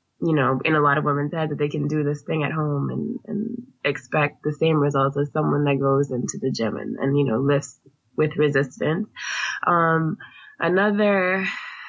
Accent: American